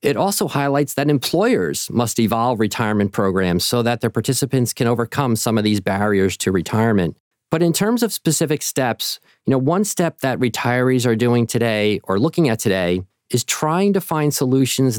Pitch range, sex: 110-140 Hz, male